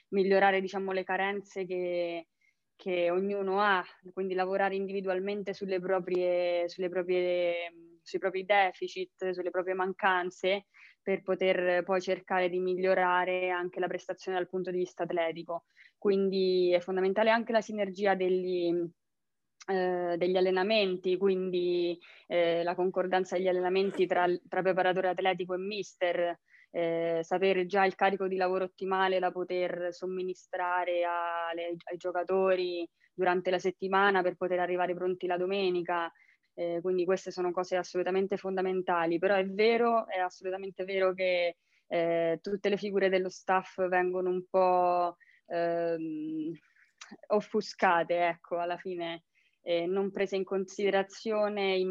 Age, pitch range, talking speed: 20-39, 180-190 Hz, 130 wpm